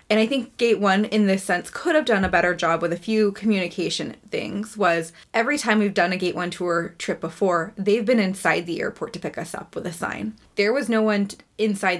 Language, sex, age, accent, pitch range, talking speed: English, female, 20-39, American, 175-215 Hz, 235 wpm